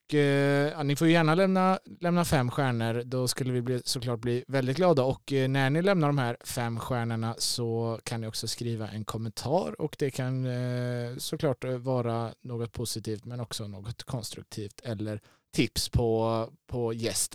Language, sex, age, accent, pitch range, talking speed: Swedish, male, 20-39, Norwegian, 115-145 Hz, 175 wpm